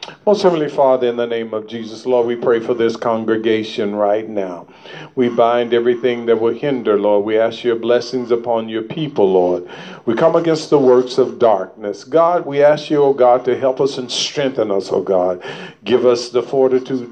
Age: 50-69